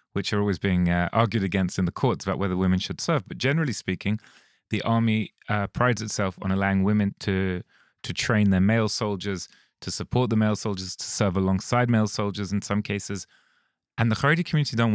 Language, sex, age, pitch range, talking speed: English, male, 30-49, 95-120 Hz, 200 wpm